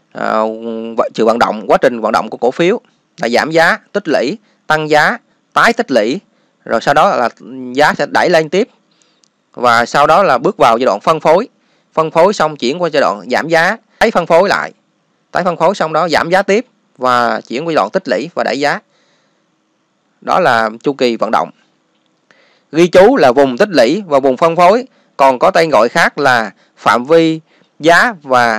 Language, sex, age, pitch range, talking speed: Vietnamese, male, 20-39, 135-185 Hz, 205 wpm